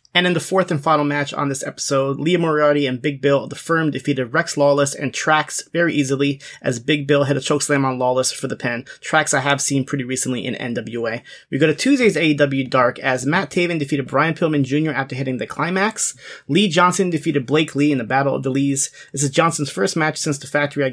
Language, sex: English, male